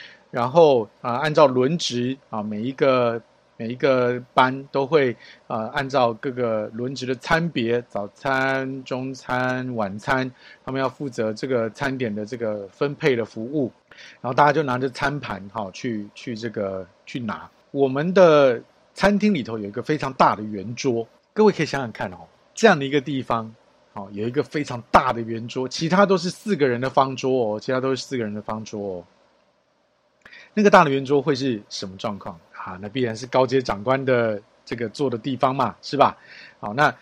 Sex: male